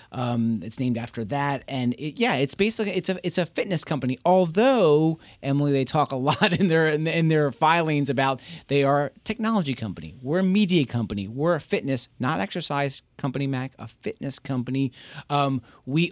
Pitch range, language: 125-165 Hz, English